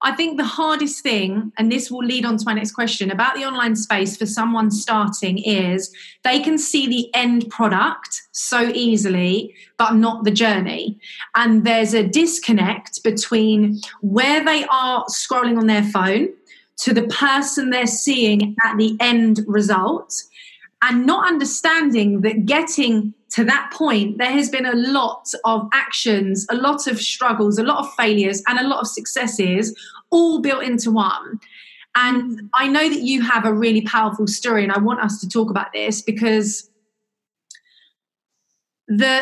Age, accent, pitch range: 30-49, British, 215-275 Hz